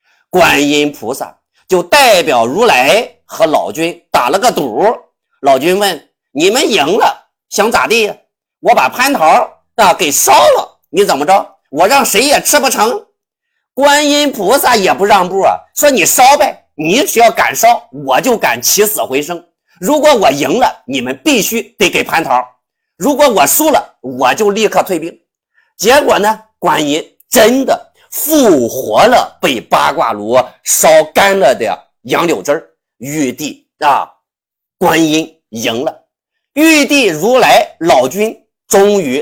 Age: 50-69